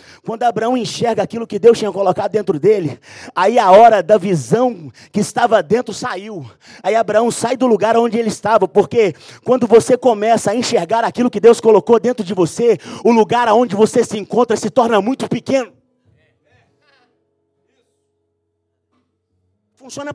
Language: Portuguese